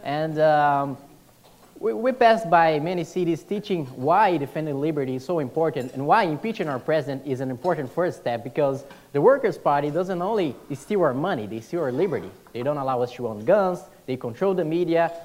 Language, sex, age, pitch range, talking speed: English, male, 20-39, 135-190 Hz, 195 wpm